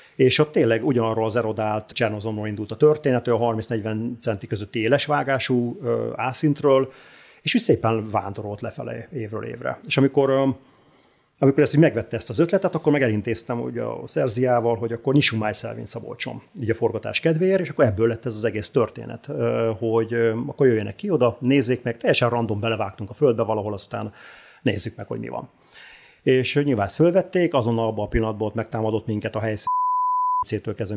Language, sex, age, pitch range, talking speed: Hungarian, male, 30-49, 105-130 Hz, 170 wpm